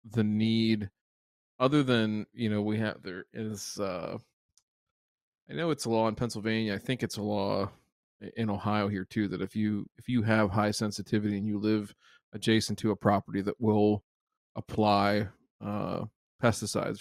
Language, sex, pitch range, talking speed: English, male, 100-115 Hz, 165 wpm